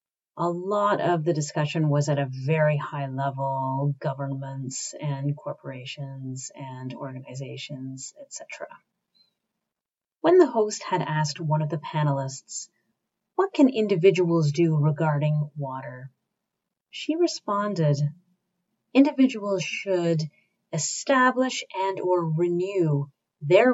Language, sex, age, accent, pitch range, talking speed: English, female, 30-49, American, 150-205 Hz, 105 wpm